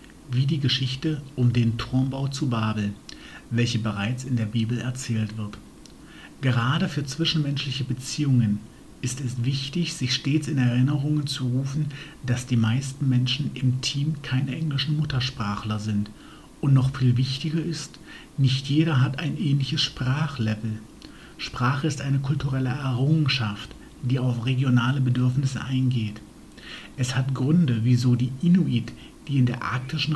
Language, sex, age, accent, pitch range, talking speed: German, male, 50-69, German, 125-145 Hz, 135 wpm